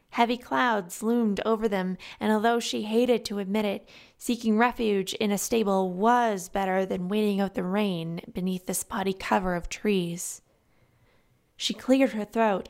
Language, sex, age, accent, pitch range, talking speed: English, female, 20-39, American, 200-235 Hz, 160 wpm